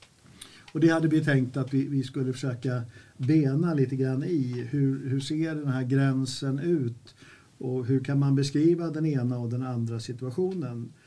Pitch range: 125-145 Hz